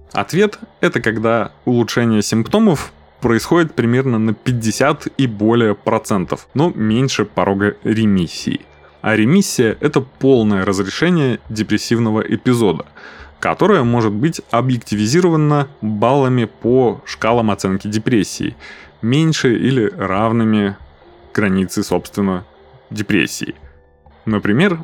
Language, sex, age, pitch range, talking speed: Russian, male, 20-39, 100-130 Hz, 100 wpm